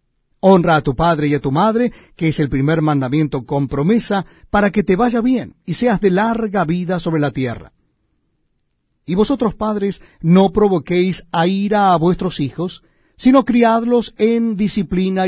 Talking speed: 165 wpm